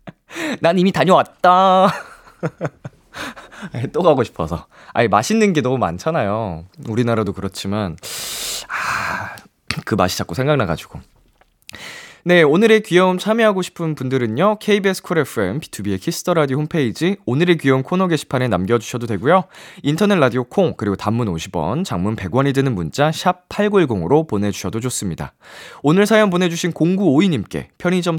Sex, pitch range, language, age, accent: male, 120-185 Hz, Korean, 20-39, native